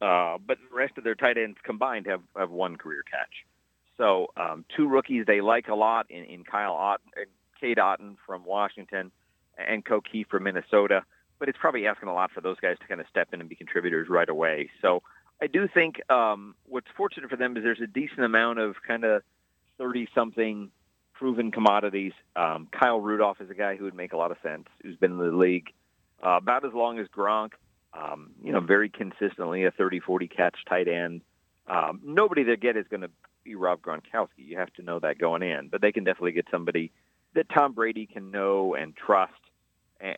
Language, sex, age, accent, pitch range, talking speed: English, male, 40-59, American, 95-115 Hz, 205 wpm